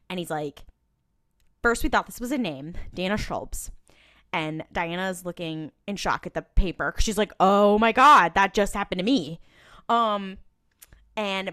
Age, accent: 10-29, American